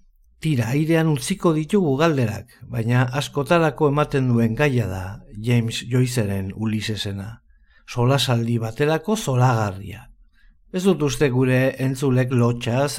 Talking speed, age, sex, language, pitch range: 115 wpm, 50-69, male, Spanish, 120-150 Hz